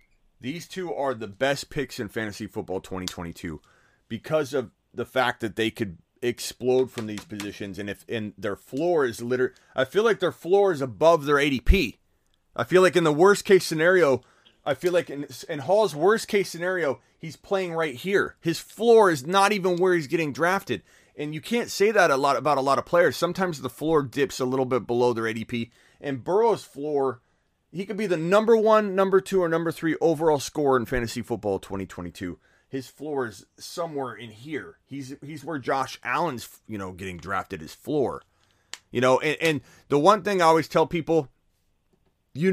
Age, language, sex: 30-49, English, male